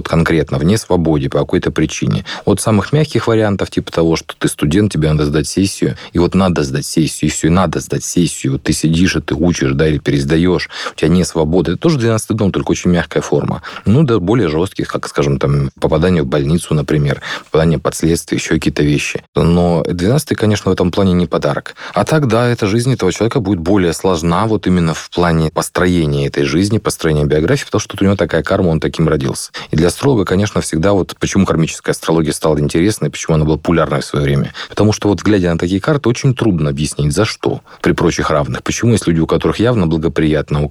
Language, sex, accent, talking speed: Russian, male, native, 210 wpm